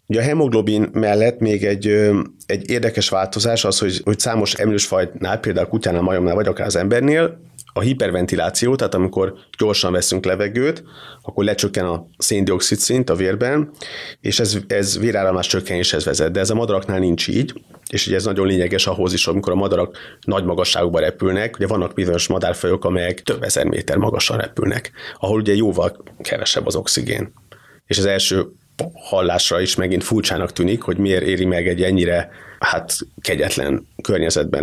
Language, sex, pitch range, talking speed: Hungarian, male, 95-110 Hz, 165 wpm